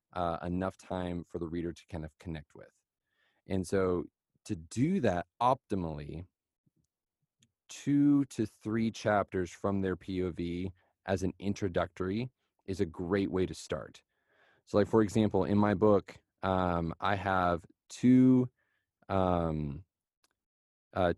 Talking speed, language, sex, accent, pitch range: 130 wpm, English, male, American, 90-110 Hz